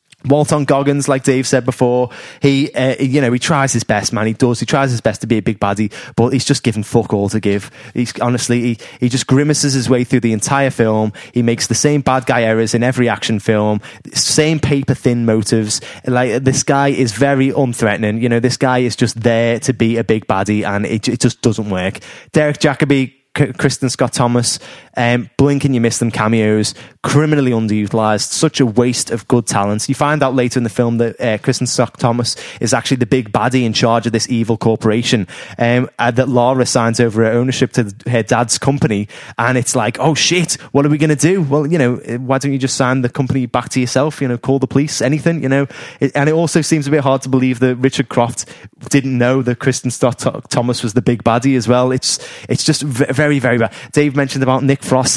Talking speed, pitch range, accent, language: 230 wpm, 115-140 Hz, British, English